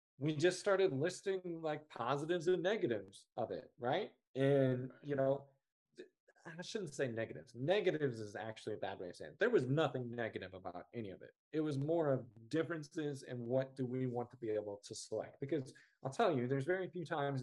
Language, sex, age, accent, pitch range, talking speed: English, male, 20-39, American, 115-145 Hz, 200 wpm